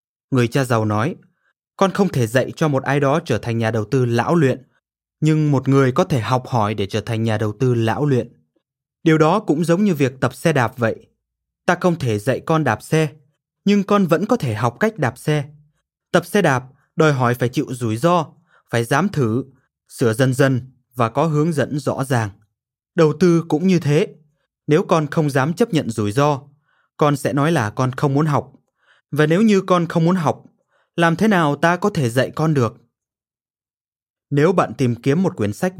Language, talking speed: Vietnamese, 210 wpm